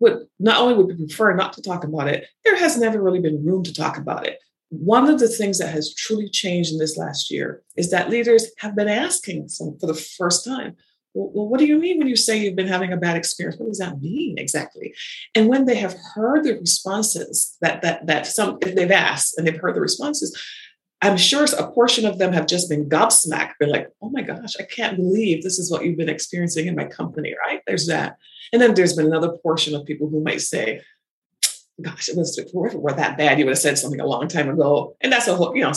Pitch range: 160-230 Hz